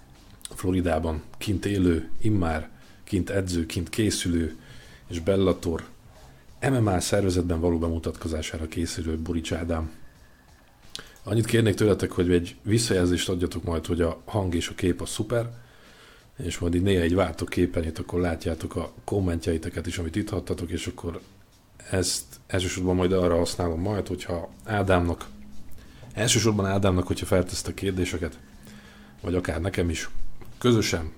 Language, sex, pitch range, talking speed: Hungarian, male, 85-100 Hz, 135 wpm